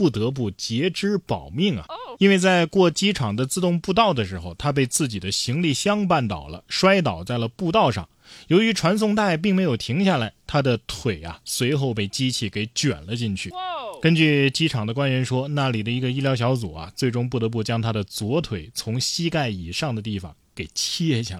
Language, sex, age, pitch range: Chinese, male, 20-39, 110-150 Hz